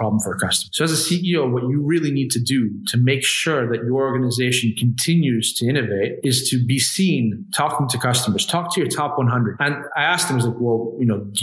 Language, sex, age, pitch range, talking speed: English, male, 30-49, 120-145 Hz, 235 wpm